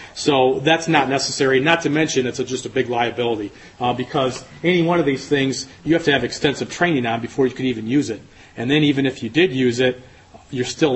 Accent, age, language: American, 40-59, English